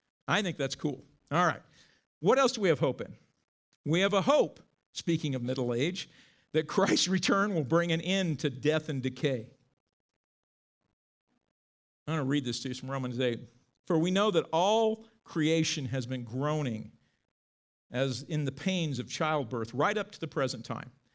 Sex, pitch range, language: male, 135-205 Hz, English